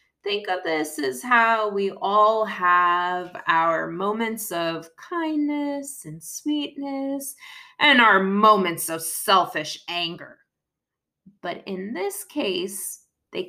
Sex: female